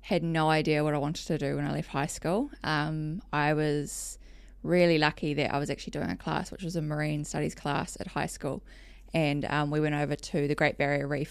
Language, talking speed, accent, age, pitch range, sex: English, 235 wpm, Australian, 20-39, 140-155 Hz, female